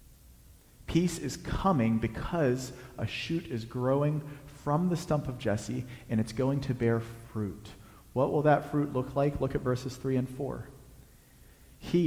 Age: 40-59